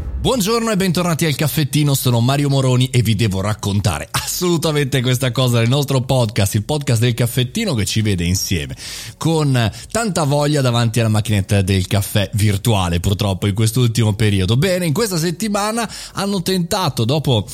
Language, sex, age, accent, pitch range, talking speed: Italian, male, 30-49, native, 100-140 Hz, 155 wpm